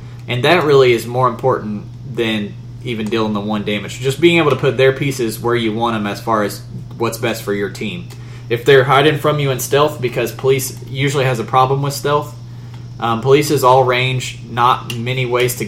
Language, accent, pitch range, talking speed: English, American, 110-130 Hz, 205 wpm